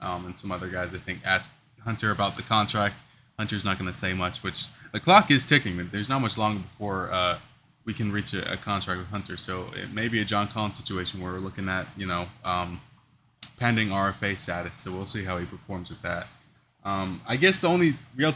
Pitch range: 95-120 Hz